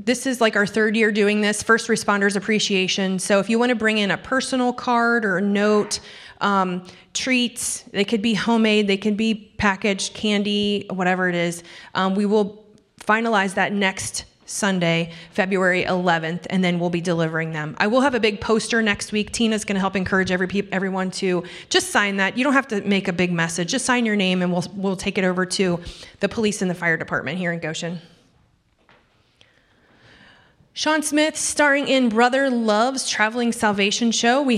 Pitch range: 190-230 Hz